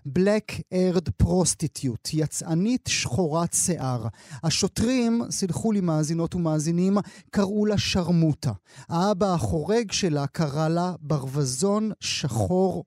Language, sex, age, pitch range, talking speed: Hebrew, male, 30-49, 150-195 Hz, 95 wpm